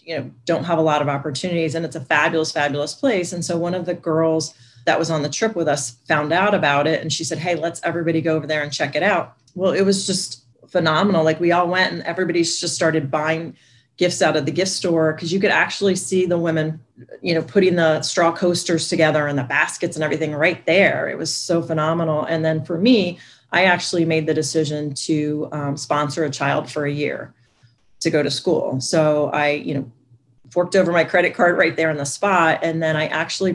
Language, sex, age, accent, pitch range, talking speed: English, female, 30-49, American, 150-170 Hz, 230 wpm